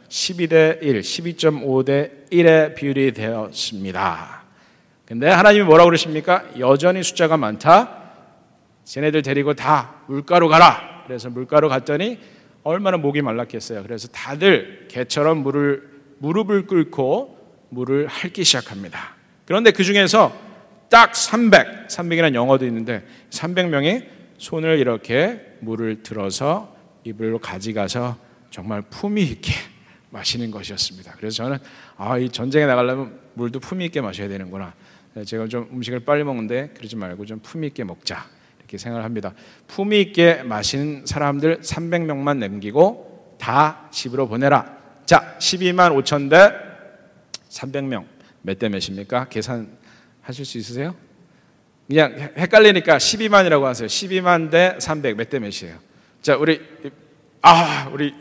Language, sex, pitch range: Korean, male, 120-170 Hz